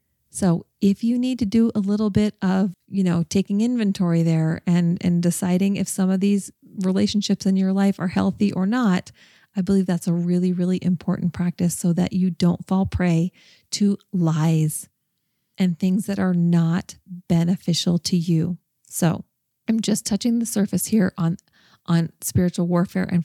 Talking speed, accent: 170 wpm, American